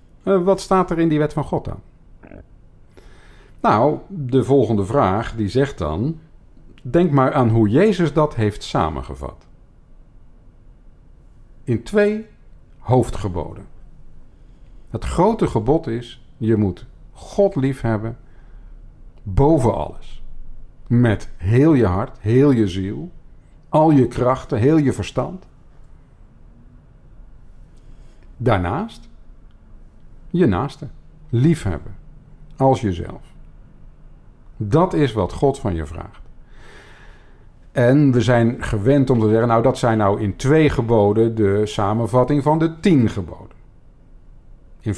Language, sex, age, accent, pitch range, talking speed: Dutch, male, 50-69, Dutch, 100-140 Hz, 115 wpm